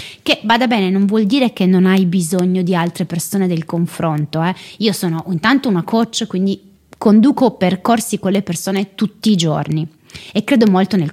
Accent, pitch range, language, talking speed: native, 170-210 Hz, Italian, 185 wpm